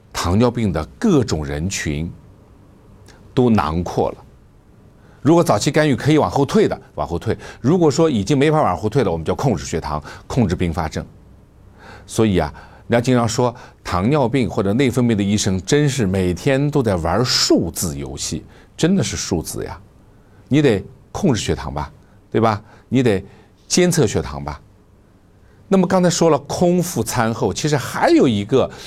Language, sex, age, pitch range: Chinese, male, 50-69, 95-135 Hz